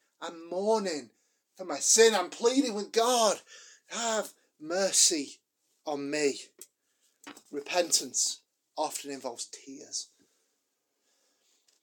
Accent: British